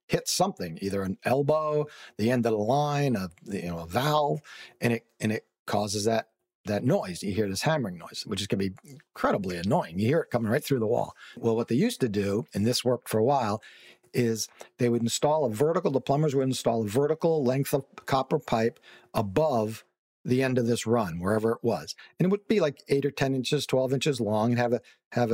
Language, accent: English, American